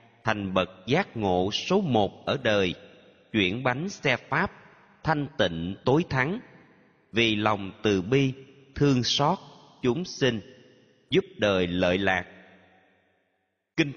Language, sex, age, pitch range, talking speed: Vietnamese, male, 30-49, 100-135 Hz, 125 wpm